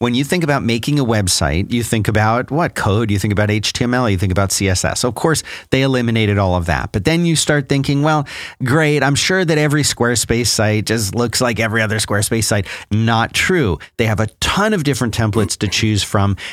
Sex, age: male, 40-59